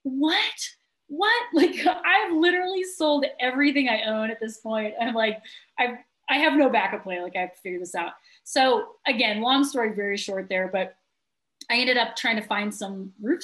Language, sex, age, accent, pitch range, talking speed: English, female, 30-49, American, 195-240 Hz, 190 wpm